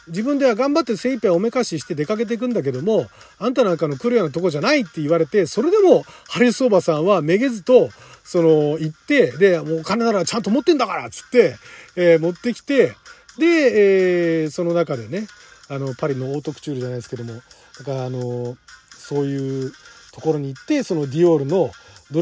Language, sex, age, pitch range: Japanese, male, 40-59, 150-230 Hz